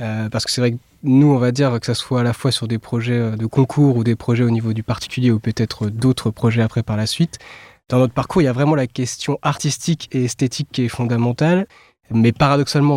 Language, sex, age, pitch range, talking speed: French, male, 20-39, 120-140 Hz, 245 wpm